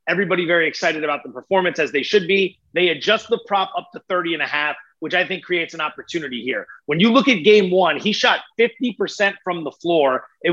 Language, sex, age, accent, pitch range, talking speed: English, male, 30-49, American, 170-210 Hz, 230 wpm